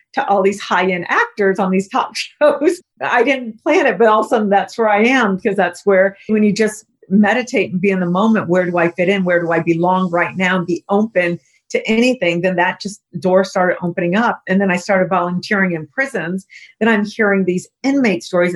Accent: American